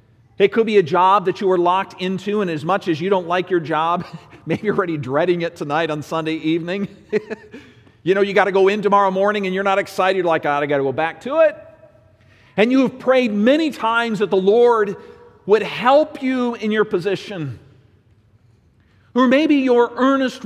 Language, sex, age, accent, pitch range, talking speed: English, male, 50-69, American, 140-220 Hz, 210 wpm